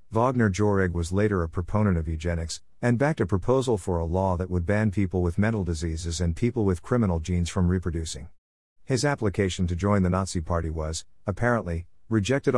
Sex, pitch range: male, 85-110 Hz